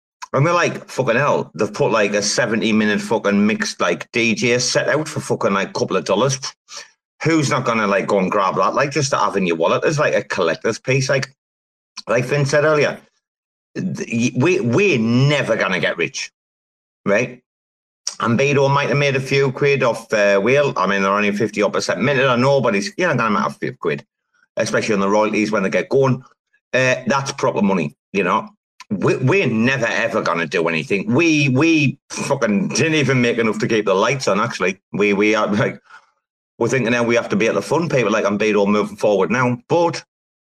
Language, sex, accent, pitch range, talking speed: English, male, British, 100-135 Hz, 205 wpm